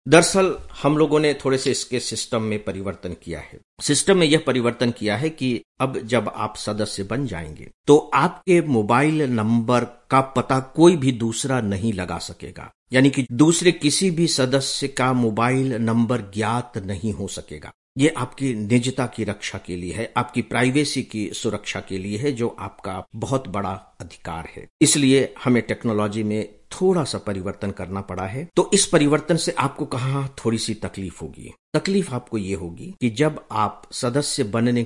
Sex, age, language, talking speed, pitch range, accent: male, 50-69, English, 145 wpm, 105-145 Hz, Indian